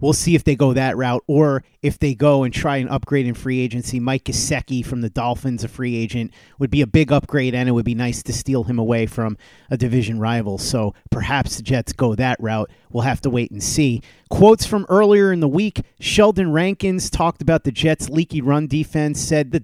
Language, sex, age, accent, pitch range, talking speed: English, male, 30-49, American, 130-165 Hz, 225 wpm